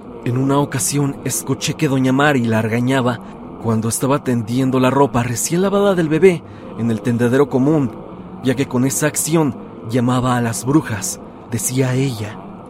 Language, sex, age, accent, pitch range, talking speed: Spanish, male, 40-59, Mexican, 125-165 Hz, 155 wpm